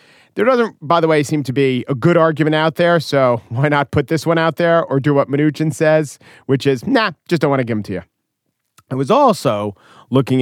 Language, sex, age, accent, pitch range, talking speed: English, male, 40-59, American, 115-150 Hz, 235 wpm